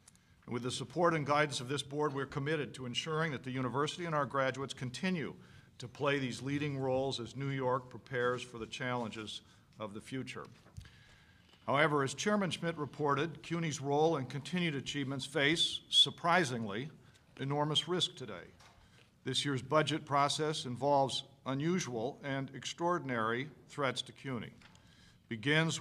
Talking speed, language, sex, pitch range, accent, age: 145 wpm, English, male, 125-155 Hz, American, 50-69